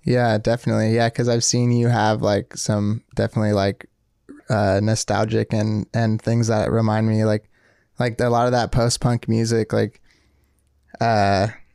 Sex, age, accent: male, 20-39, American